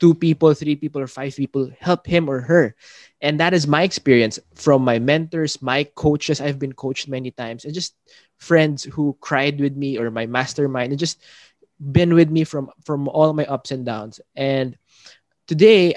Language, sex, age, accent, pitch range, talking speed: English, male, 20-39, Filipino, 135-170 Hz, 190 wpm